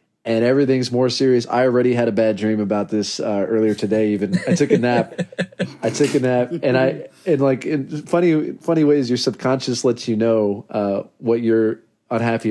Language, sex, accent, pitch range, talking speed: English, male, American, 110-145 Hz, 195 wpm